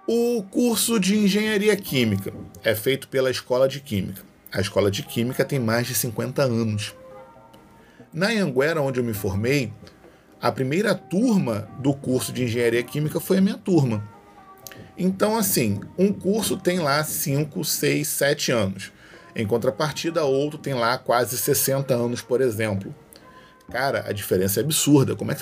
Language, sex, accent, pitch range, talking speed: Portuguese, male, Brazilian, 115-170 Hz, 155 wpm